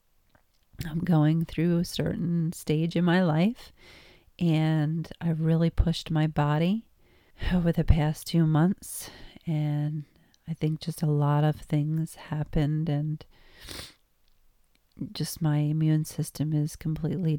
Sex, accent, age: female, American, 40-59